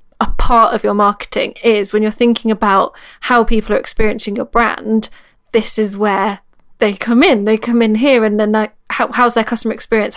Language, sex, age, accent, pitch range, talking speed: English, female, 10-29, British, 205-235 Hz, 200 wpm